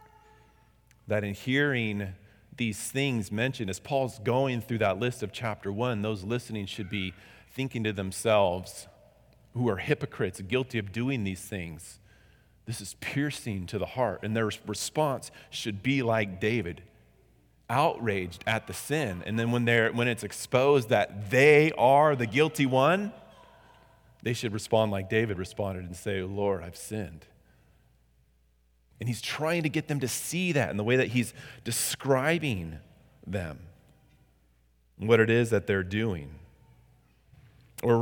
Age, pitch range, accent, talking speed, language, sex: 30-49, 100-125 Hz, American, 150 wpm, English, male